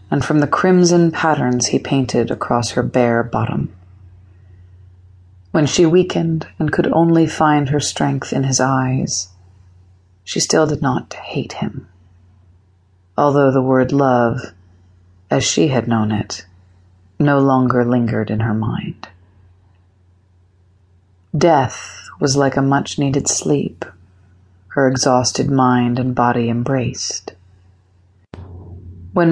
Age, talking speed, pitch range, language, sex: 40-59, 115 wpm, 90-140 Hz, English, female